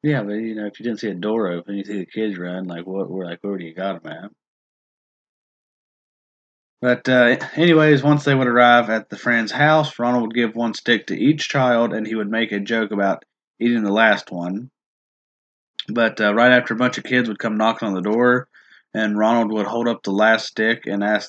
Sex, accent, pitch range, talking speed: male, American, 105-125 Hz, 225 wpm